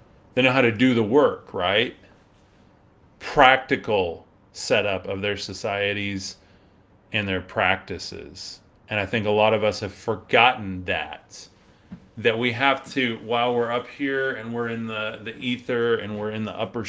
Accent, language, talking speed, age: American, English, 160 wpm, 30-49